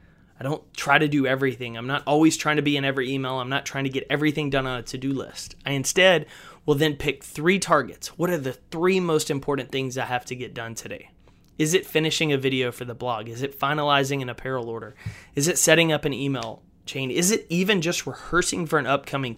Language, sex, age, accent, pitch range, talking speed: English, male, 20-39, American, 130-160 Hz, 230 wpm